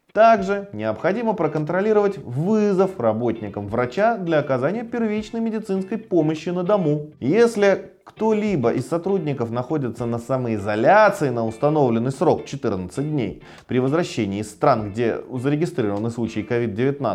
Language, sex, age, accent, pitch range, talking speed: Russian, male, 20-39, native, 115-175 Hz, 115 wpm